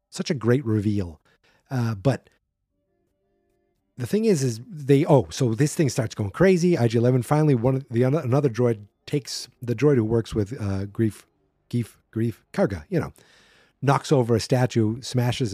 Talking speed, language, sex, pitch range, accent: 160 wpm, English, male, 110-150 Hz, American